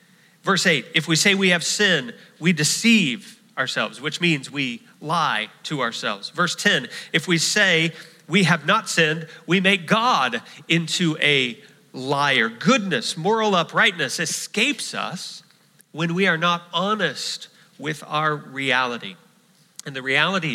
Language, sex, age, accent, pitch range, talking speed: English, male, 40-59, American, 155-195 Hz, 140 wpm